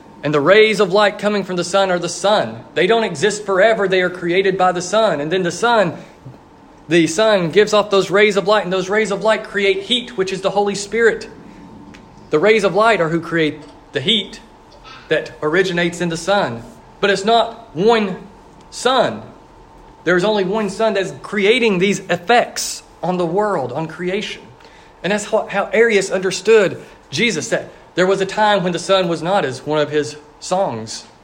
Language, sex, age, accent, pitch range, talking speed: English, male, 40-59, American, 180-215 Hz, 195 wpm